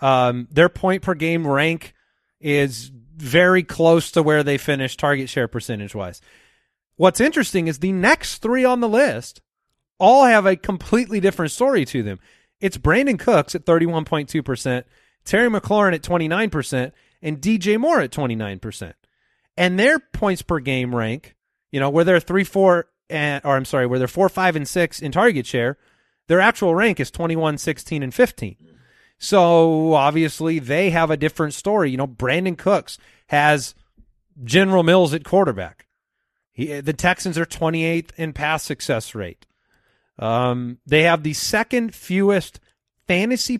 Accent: American